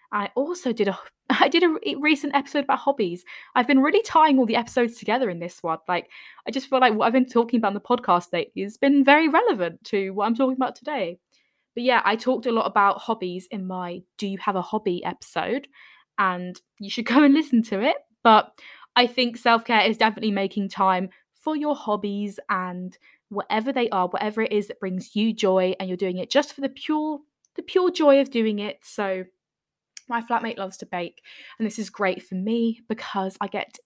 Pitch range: 195-260 Hz